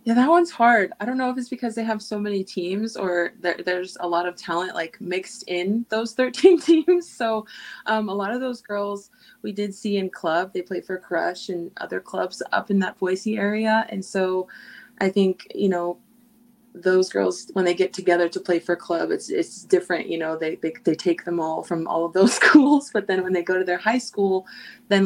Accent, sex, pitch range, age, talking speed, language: American, female, 180-215 Hz, 20-39, 225 wpm, English